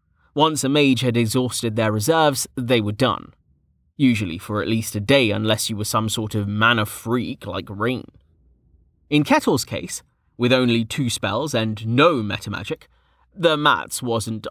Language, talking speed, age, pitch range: English, 160 wpm, 30-49, 110-140 Hz